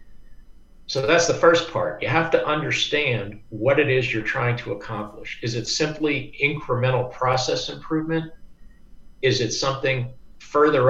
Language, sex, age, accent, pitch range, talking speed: English, male, 50-69, American, 110-140 Hz, 145 wpm